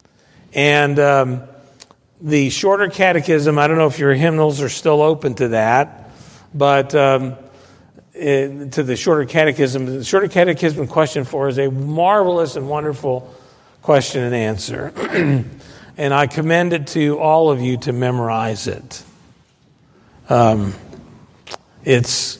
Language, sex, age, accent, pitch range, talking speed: English, male, 50-69, American, 135-175 Hz, 130 wpm